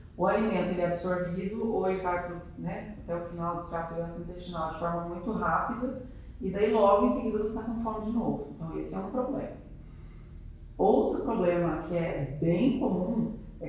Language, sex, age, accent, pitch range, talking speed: Portuguese, female, 40-59, Brazilian, 175-220 Hz, 195 wpm